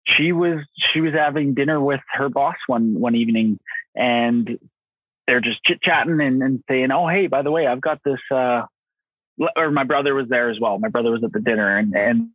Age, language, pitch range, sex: 20-39, English, 120-150 Hz, male